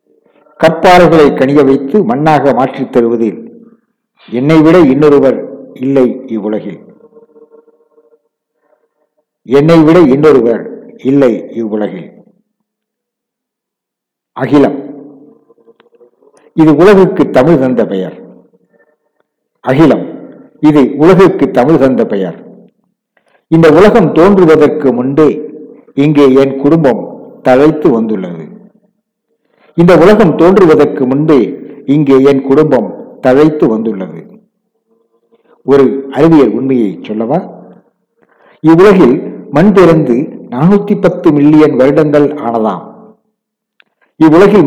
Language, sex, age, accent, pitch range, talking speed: Tamil, male, 60-79, native, 135-205 Hz, 65 wpm